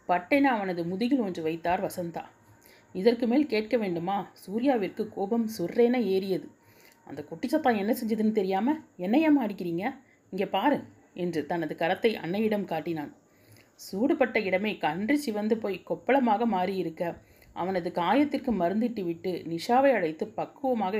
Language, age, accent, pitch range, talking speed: Tamil, 30-49, native, 175-245 Hz, 115 wpm